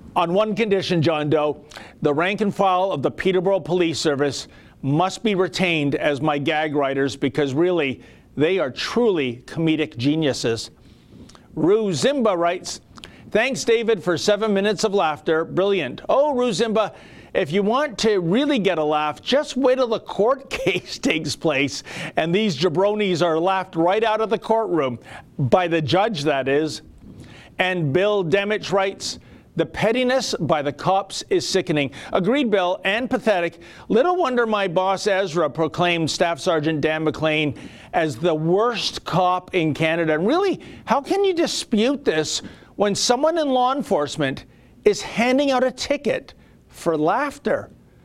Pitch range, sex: 155-220 Hz, male